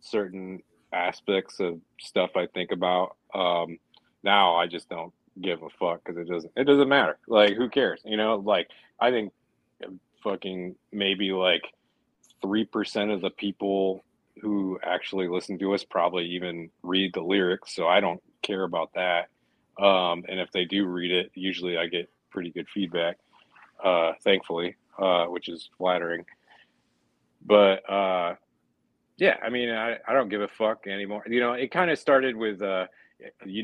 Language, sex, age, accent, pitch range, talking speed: English, male, 30-49, American, 85-100 Hz, 165 wpm